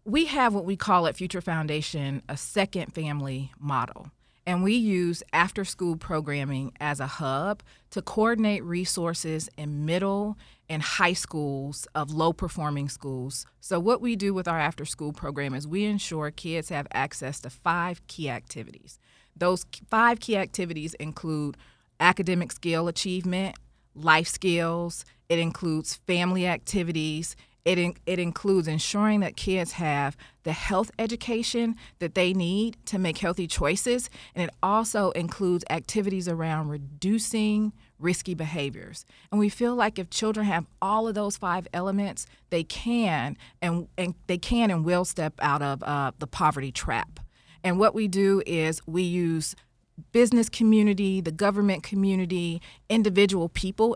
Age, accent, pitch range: 30-49, American, 155-200 Hz